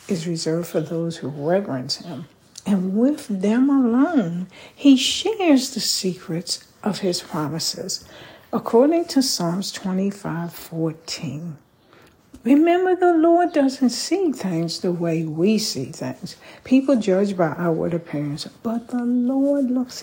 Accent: American